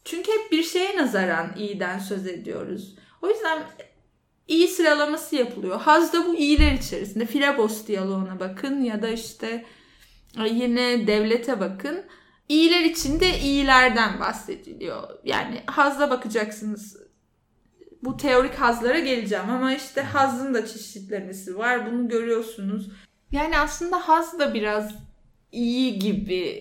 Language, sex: Turkish, female